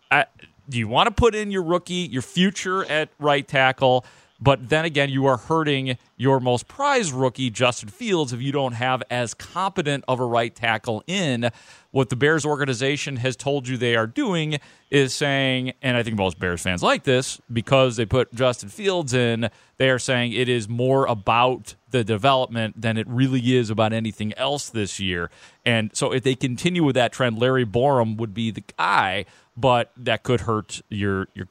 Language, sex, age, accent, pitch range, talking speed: English, male, 40-59, American, 110-140 Hz, 190 wpm